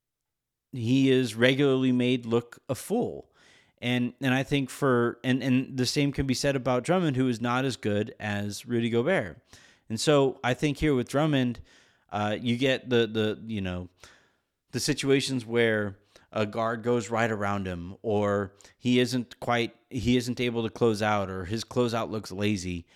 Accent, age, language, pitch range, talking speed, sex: American, 30-49, English, 110-140 Hz, 175 wpm, male